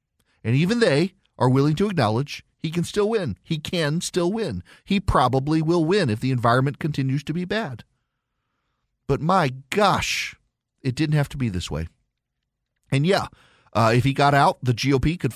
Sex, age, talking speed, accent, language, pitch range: male, 40-59, 180 wpm, American, English, 100-140 Hz